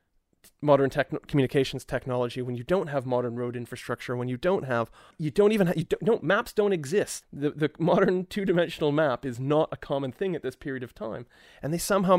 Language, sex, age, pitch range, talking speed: English, male, 30-49, 125-175 Hz, 210 wpm